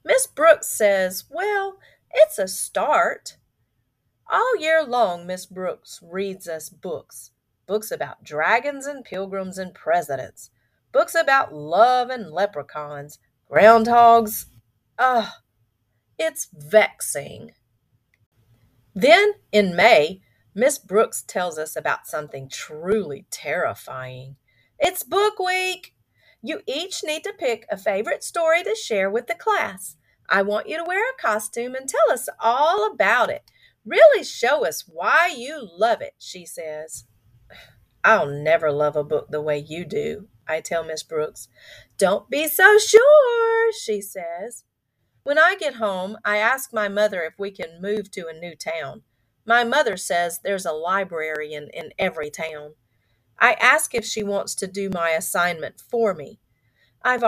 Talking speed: 145 wpm